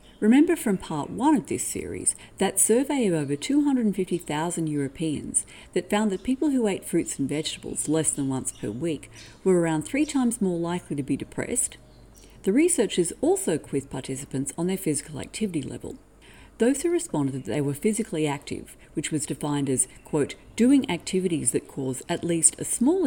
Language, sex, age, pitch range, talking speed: English, female, 50-69, 140-225 Hz, 175 wpm